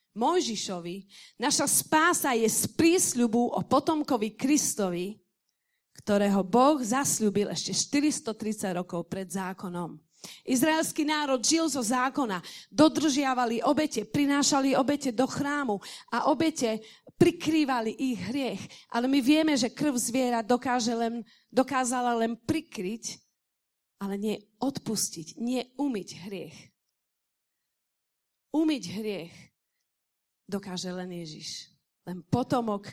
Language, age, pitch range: Slovak, 40-59, 195-280 Hz